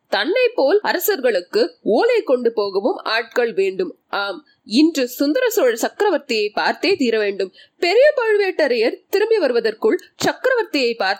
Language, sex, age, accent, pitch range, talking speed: Tamil, female, 20-39, native, 270-420 Hz, 75 wpm